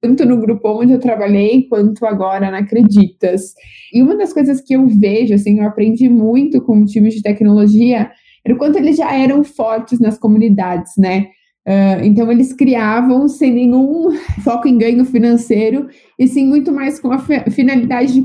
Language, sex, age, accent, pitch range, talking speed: Italian, female, 20-39, Brazilian, 215-255 Hz, 180 wpm